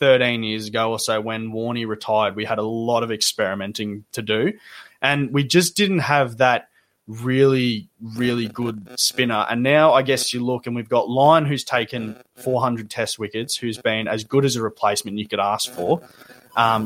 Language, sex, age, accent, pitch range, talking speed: English, male, 20-39, Australian, 110-130 Hz, 190 wpm